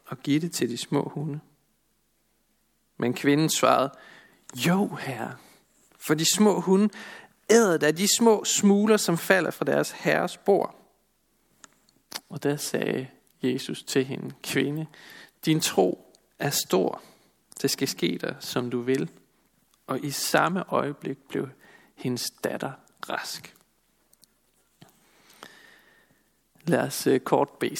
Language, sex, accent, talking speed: Danish, male, native, 125 wpm